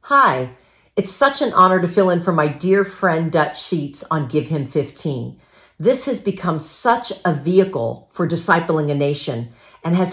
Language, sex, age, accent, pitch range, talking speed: English, female, 50-69, American, 150-190 Hz, 180 wpm